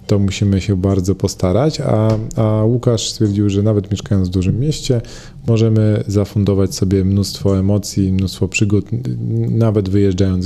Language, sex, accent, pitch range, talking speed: Polish, male, native, 95-115 Hz, 140 wpm